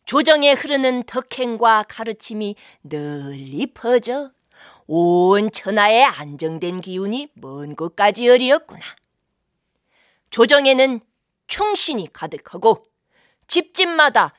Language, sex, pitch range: Korean, female, 205-295 Hz